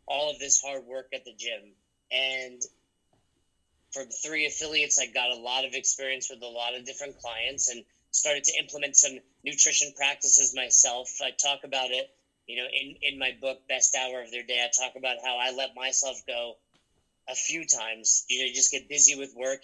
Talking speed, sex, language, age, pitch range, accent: 205 wpm, male, English, 30-49, 125-140 Hz, American